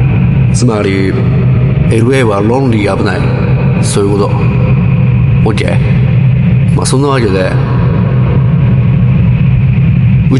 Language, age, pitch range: Japanese, 30-49, 120-135 Hz